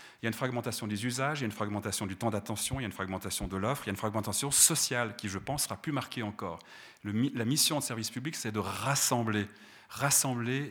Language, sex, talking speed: French, male, 250 wpm